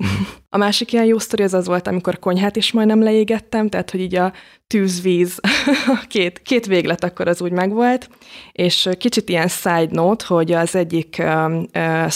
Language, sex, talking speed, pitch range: Hungarian, female, 170 wpm, 170-195 Hz